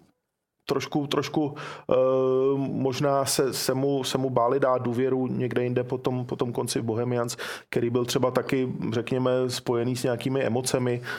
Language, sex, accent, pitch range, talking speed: Czech, male, native, 115-135 Hz, 160 wpm